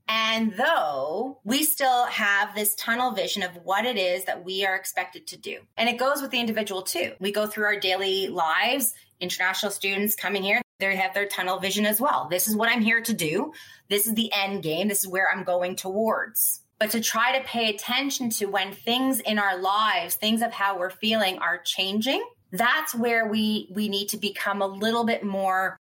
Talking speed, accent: 210 wpm, American